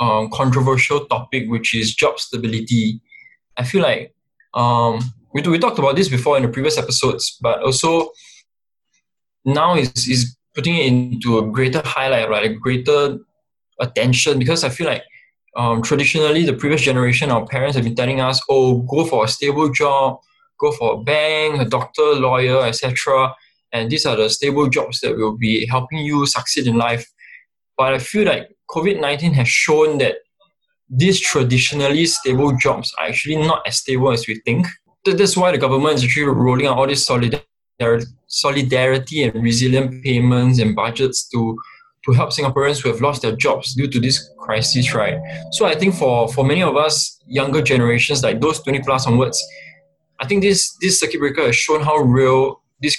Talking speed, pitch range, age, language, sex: 175 wpm, 120-150 Hz, 20-39, English, male